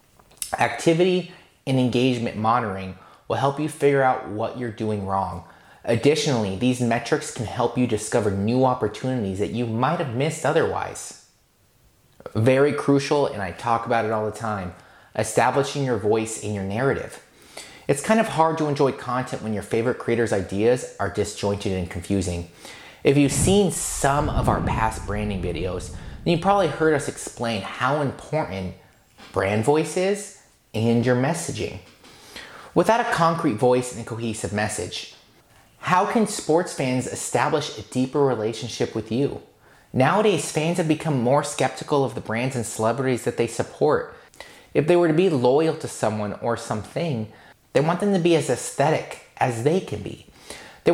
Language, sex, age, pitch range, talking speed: English, male, 20-39, 110-150 Hz, 160 wpm